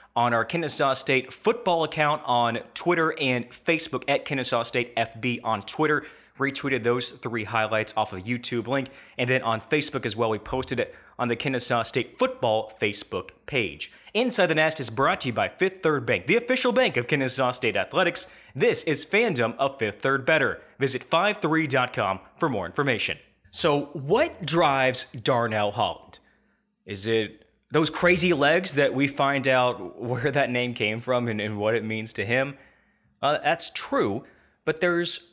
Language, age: English, 20-39